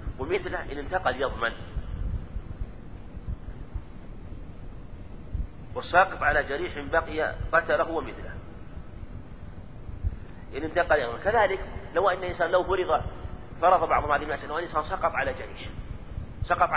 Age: 40-59